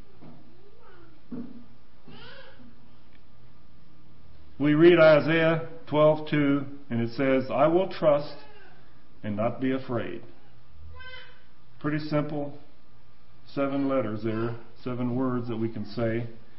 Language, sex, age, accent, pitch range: English, male, 50-69, American, 125-205 Hz